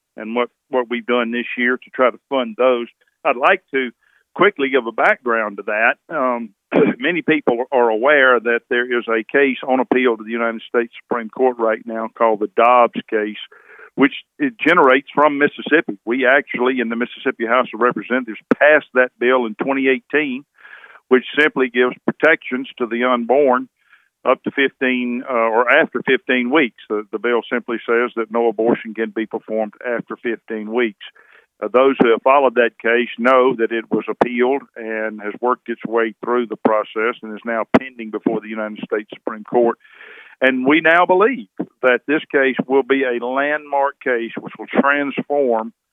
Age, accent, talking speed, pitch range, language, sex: 50-69, American, 180 wpm, 115-130 Hz, English, male